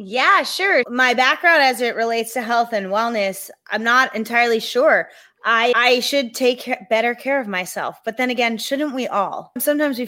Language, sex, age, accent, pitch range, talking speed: English, female, 30-49, American, 200-245 Hz, 190 wpm